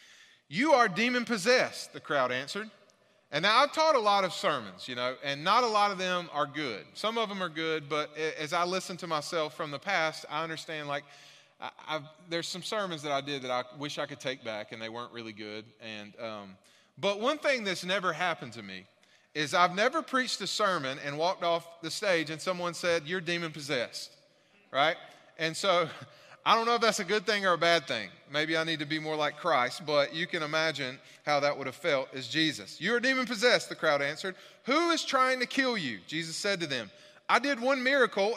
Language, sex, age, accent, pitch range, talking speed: English, male, 30-49, American, 145-210 Hz, 220 wpm